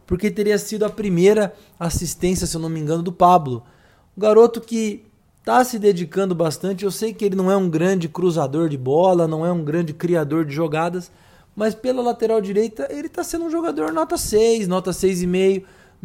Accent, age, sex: Brazilian, 20-39, male